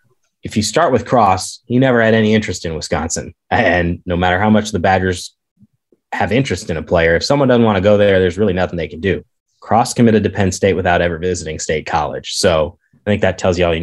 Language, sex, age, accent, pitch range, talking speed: English, male, 20-39, American, 90-110 Hz, 240 wpm